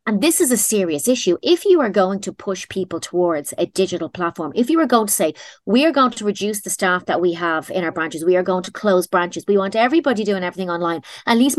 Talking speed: 260 wpm